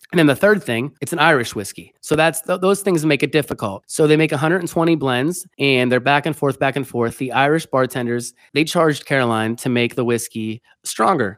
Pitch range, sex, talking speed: 120-150 Hz, male, 215 wpm